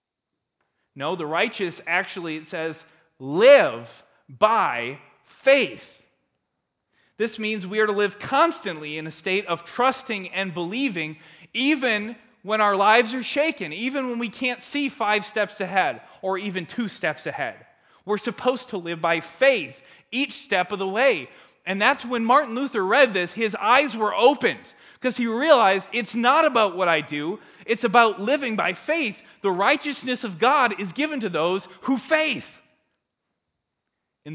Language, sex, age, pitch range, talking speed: English, male, 20-39, 160-240 Hz, 155 wpm